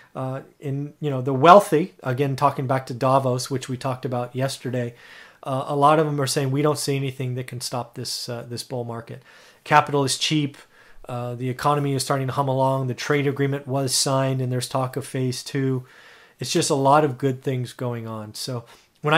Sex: male